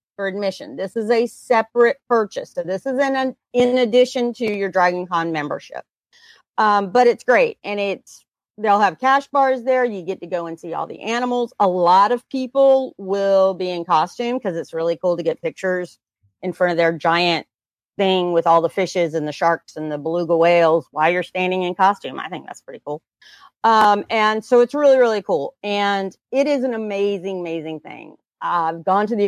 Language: English